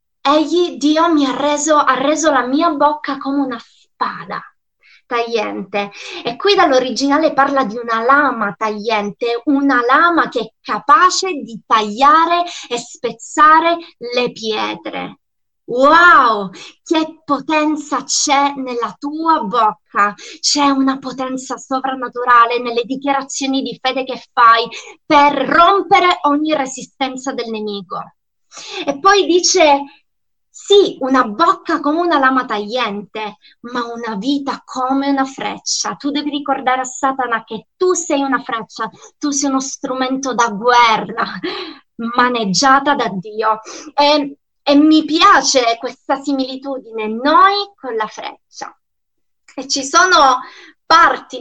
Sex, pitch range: female, 240-300 Hz